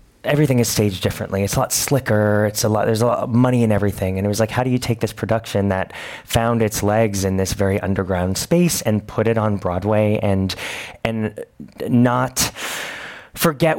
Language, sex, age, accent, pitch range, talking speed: English, male, 30-49, American, 95-115 Hz, 200 wpm